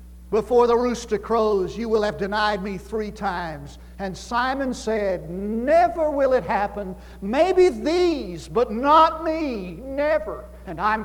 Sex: male